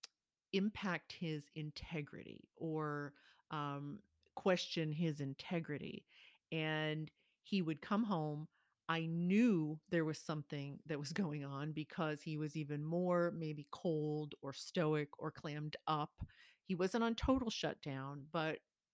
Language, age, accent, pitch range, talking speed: English, 40-59, American, 150-180 Hz, 125 wpm